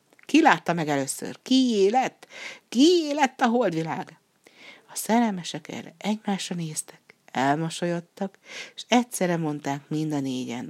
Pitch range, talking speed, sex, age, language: 140-195 Hz, 125 wpm, female, 60-79, Hungarian